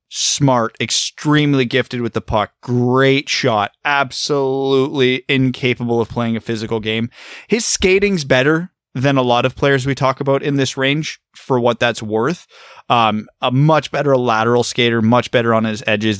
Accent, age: American, 20-39